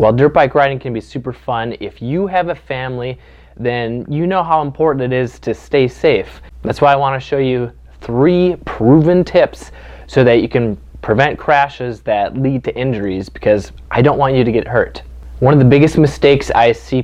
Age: 20-39